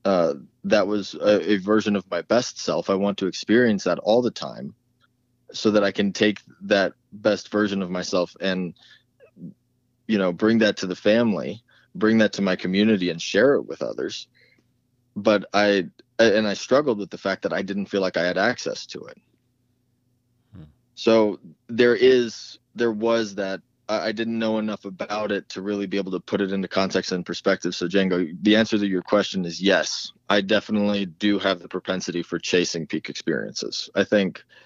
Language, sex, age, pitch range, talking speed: English, male, 20-39, 95-110 Hz, 185 wpm